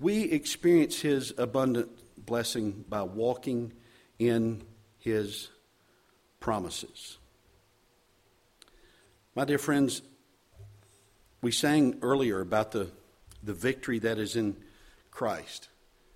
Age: 50-69